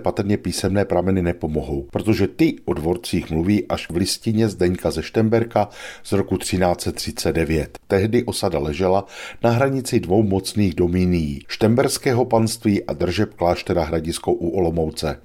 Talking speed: 135 wpm